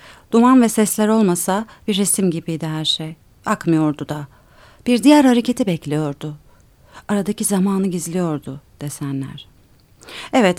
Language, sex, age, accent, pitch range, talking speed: Turkish, female, 40-59, native, 160-225 Hz, 115 wpm